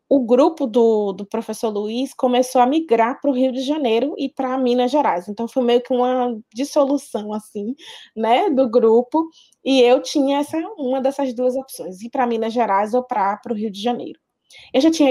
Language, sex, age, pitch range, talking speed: Portuguese, female, 20-39, 205-255 Hz, 195 wpm